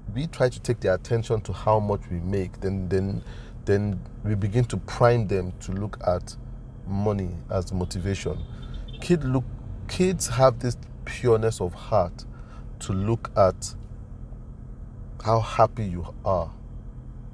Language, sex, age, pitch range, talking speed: English, male, 40-59, 100-120 Hz, 140 wpm